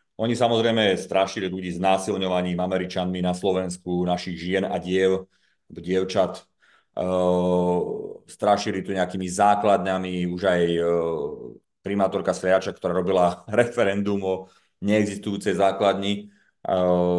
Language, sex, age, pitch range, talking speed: Slovak, male, 30-49, 90-100 Hz, 110 wpm